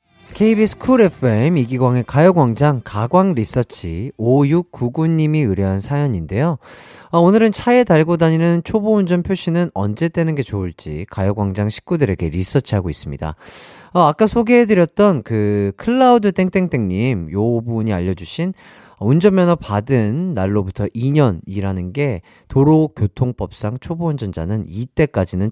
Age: 30-49